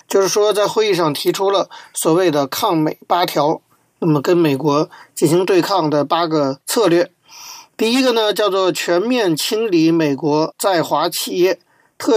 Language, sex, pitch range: Chinese, male, 165-250 Hz